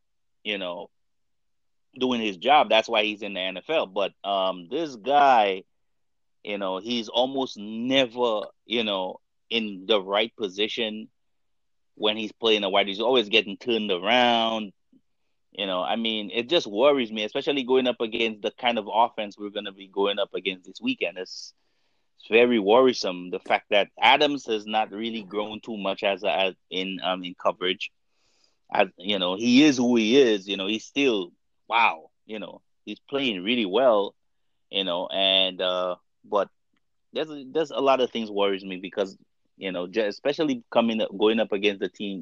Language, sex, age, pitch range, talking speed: English, male, 30-49, 95-120 Hz, 175 wpm